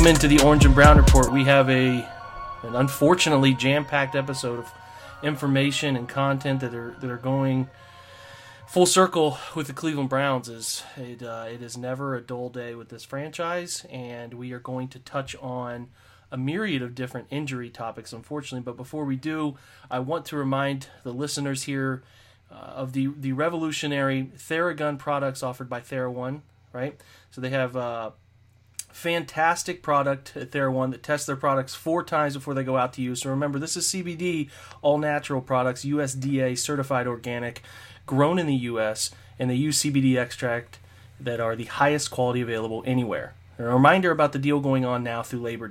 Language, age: English, 30-49